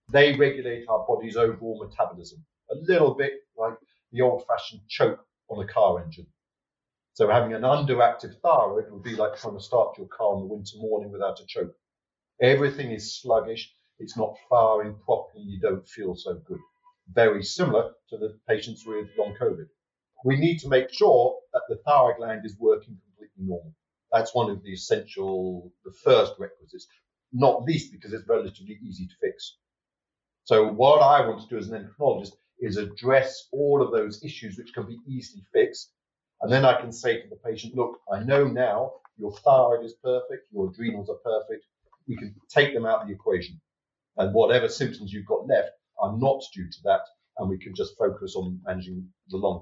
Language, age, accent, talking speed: English, 40-59, British, 185 wpm